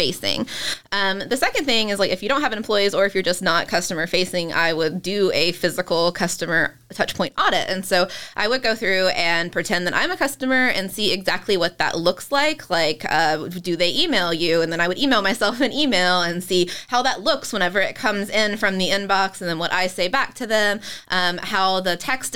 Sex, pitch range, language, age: female, 180-215 Hz, English, 20-39